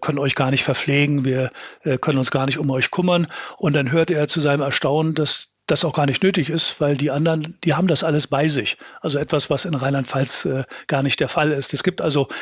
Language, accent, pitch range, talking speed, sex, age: German, German, 135-155 Hz, 240 wpm, male, 50-69